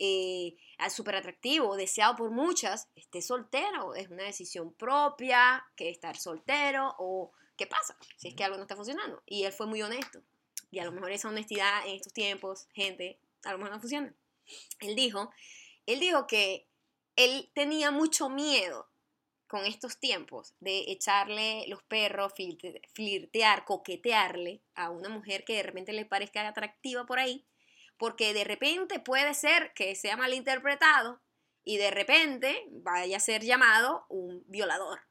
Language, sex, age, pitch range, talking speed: Spanish, female, 20-39, 195-260 Hz, 155 wpm